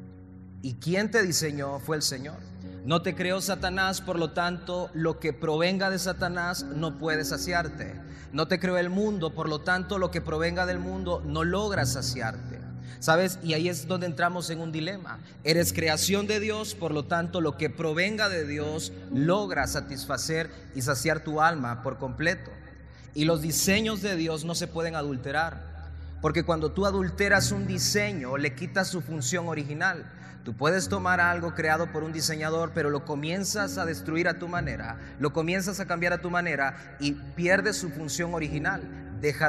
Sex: male